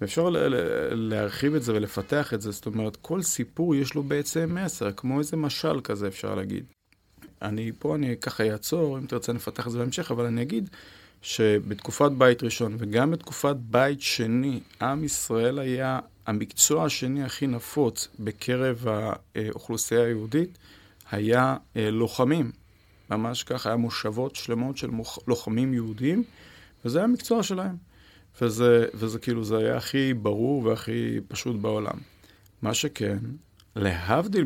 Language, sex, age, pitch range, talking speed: Hebrew, male, 30-49, 110-140 Hz, 145 wpm